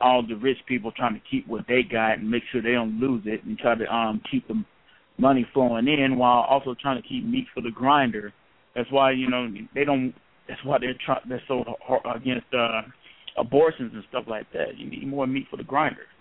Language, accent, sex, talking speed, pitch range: English, American, male, 225 wpm, 120-140 Hz